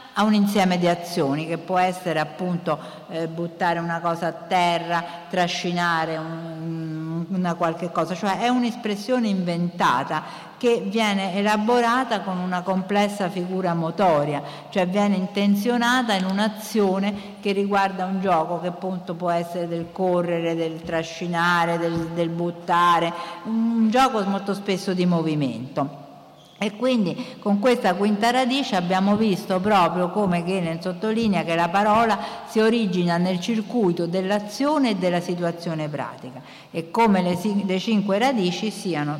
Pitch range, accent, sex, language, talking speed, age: 170-210 Hz, native, female, Italian, 135 wpm, 50-69